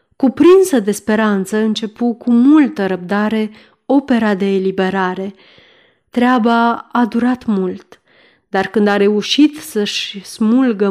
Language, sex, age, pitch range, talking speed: Romanian, female, 30-49, 200-255 Hz, 110 wpm